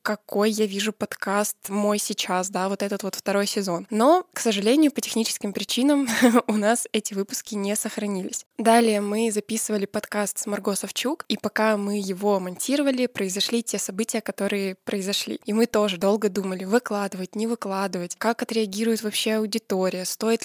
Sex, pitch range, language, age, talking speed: female, 200-225 Hz, Russian, 10-29, 160 wpm